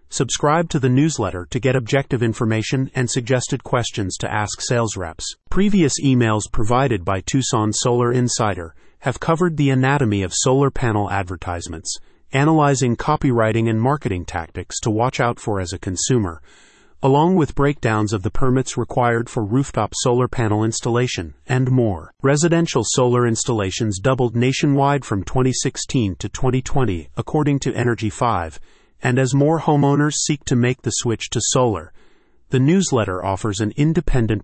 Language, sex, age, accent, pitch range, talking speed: English, male, 30-49, American, 105-140 Hz, 150 wpm